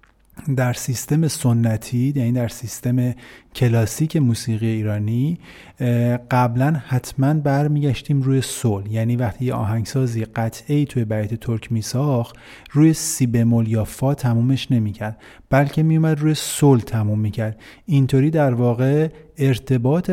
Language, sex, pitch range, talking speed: Persian, male, 115-145 Hz, 125 wpm